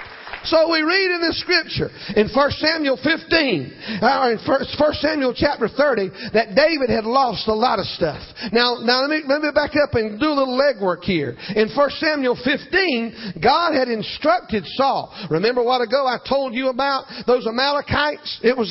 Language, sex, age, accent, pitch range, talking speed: English, male, 40-59, American, 230-290 Hz, 185 wpm